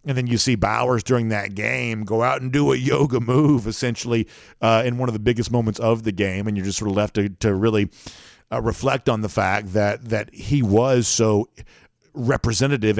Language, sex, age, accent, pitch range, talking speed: English, male, 50-69, American, 100-115 Hz, 210 wpm